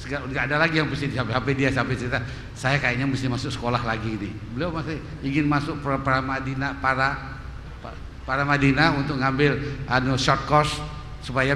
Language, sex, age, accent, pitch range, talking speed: Indonesian, male, 50-69, native, 125-150 Hz, 160 wpm